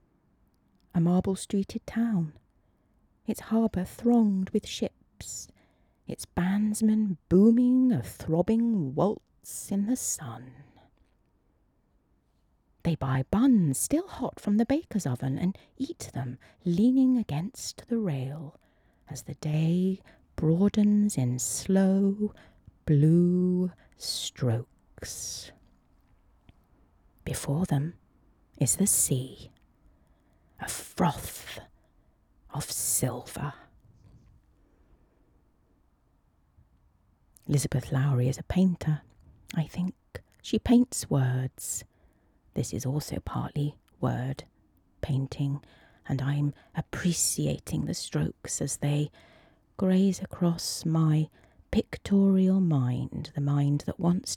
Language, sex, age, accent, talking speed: English, female, 30-49, British, 90 wpm